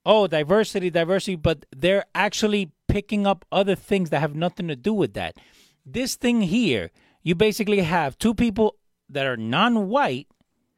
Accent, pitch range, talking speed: American, 155-210 Hz, 155 wpm